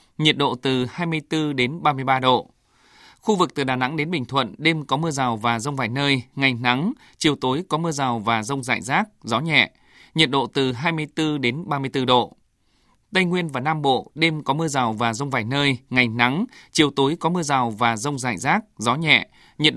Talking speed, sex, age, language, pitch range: 215 wpm, male, 20-39, Vietnamese, 125-155 Hz